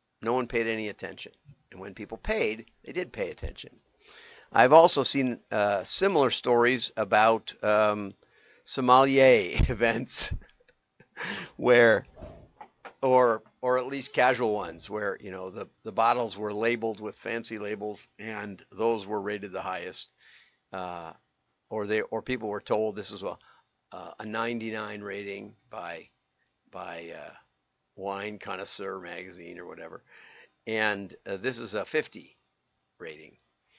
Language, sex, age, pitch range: English, male, 50-69, 105-130 Hz